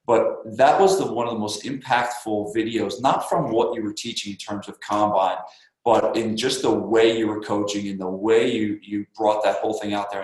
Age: 20-39